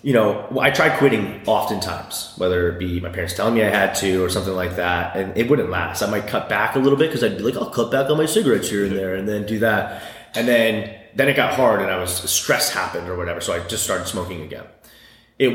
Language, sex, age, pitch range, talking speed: English, male, 30-49, 90-120 Hz, 265 wpm